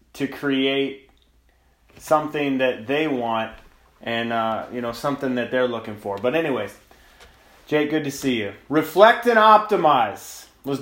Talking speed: 145 wpm